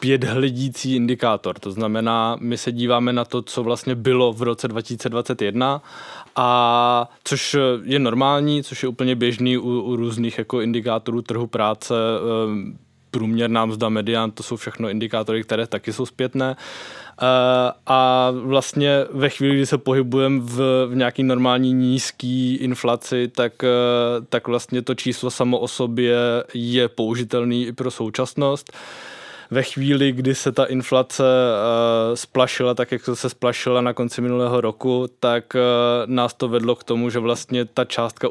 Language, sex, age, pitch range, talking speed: English, male, 20-39, 120-130 Hz, 145 wpm